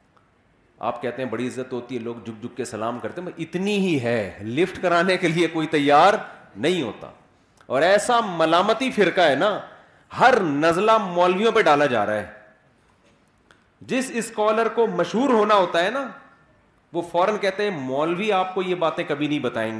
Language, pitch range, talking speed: Urdu, 160-220 Hz, 180 wpm